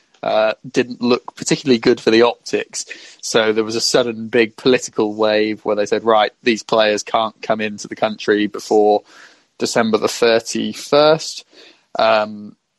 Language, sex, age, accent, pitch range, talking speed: English, male, 20-39, British, 115-130 Hz, 150 wpm